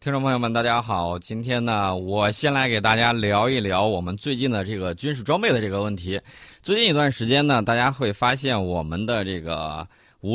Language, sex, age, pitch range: Chinese, male, 20-39, 95-130 Hz